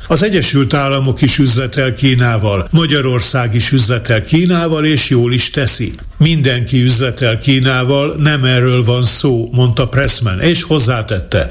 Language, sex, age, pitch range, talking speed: Hungarian, male, 60-79, 120-145 Hz, 130 wpm